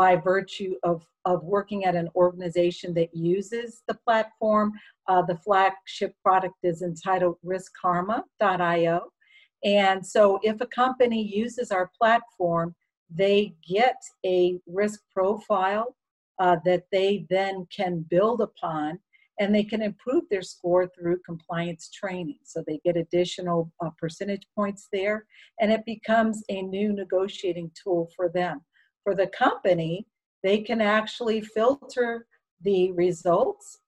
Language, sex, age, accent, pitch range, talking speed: English, female, 50-69, American, 175-210 Hz, 130 wpm